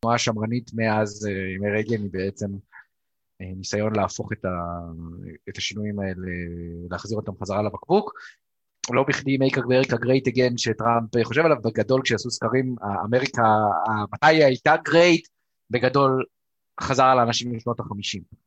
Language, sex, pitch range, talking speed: Hebrew, male, 110-135 Hz, 130 wpm